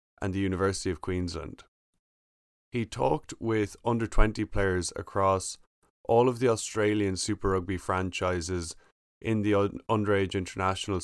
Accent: Irish